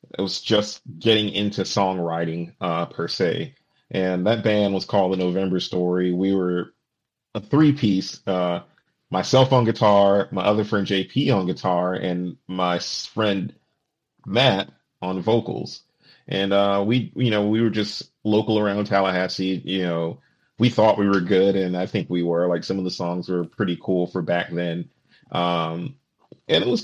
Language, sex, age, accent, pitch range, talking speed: English, male, 30-49, American, 90-110 Hz, 170 wpm